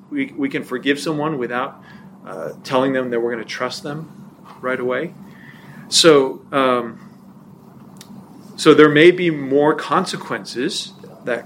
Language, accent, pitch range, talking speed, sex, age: English, American, 140-185 Hz, 135 wpm, male, 40-59